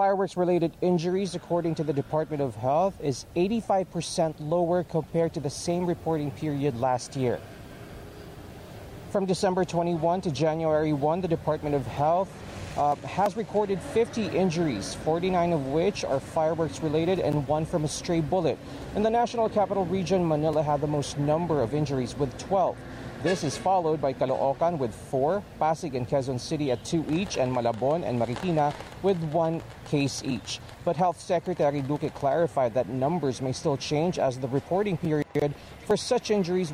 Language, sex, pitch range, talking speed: English, male, 145-180 Hz, 160 wpm